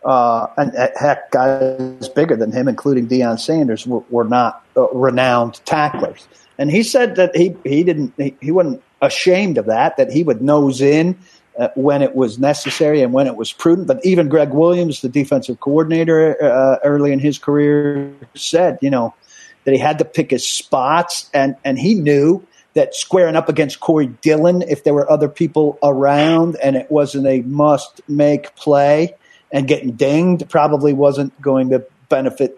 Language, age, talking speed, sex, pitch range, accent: English, 50-69, 180 wpm, male, 130-165 Hz, American